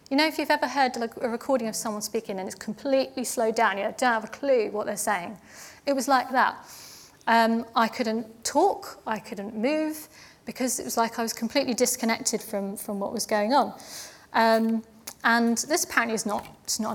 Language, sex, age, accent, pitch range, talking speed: English, female, 30-49, British, 220-260 Hz, 210 wpm